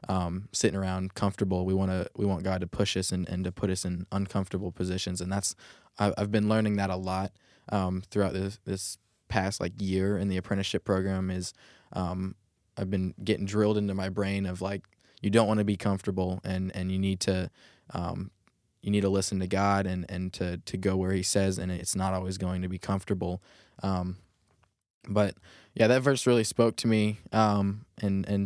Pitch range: 95-100 Hz